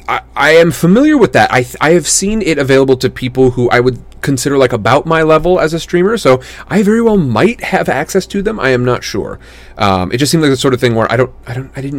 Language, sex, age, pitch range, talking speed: English, male, 30-49, 95-140 Hz, 270 wpm